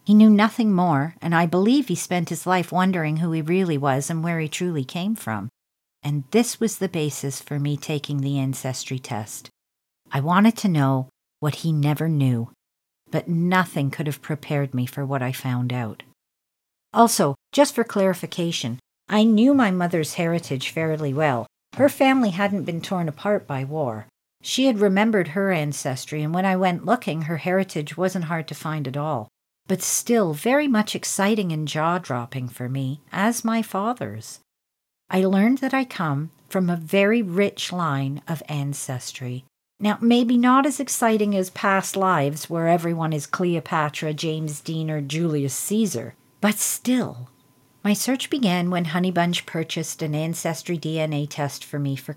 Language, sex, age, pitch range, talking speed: English, female, 50-69, 140-190 Hz, 165 wpm